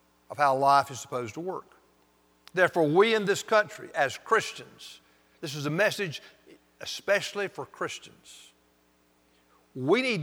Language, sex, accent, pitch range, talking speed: English, male, American, 115-180 Hz, 135 wpm